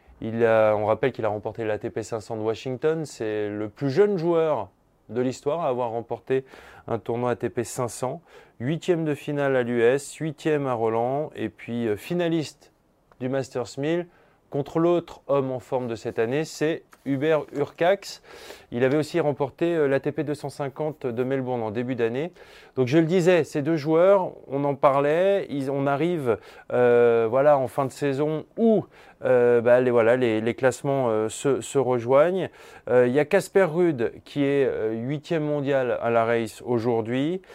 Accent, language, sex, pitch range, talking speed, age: French, French, male, 115-150 Hz, 165 wpm, 20-39